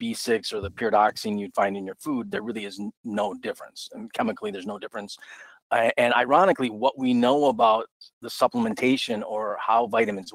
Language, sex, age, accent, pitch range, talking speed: English, male, 40-59, American, 105-135 Hz, 180 wpm